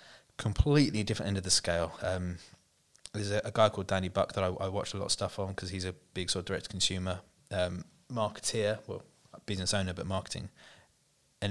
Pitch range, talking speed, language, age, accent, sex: 95-115 Hz, 205 wpm, English, 20-39, British, male